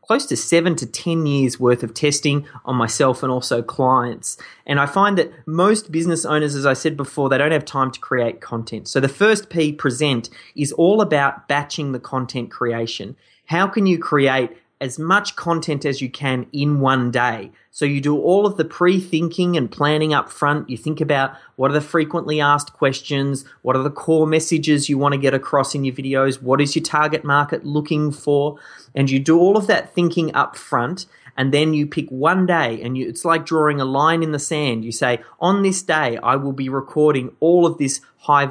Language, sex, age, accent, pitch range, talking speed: English, male, 30-49, Australian, 130-160 Hz, 210 wpm